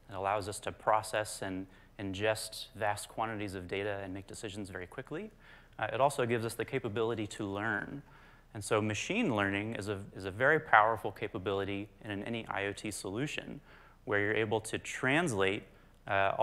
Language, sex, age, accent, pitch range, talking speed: English, male, 30-49, American, 100-115 Hz, 165 wpm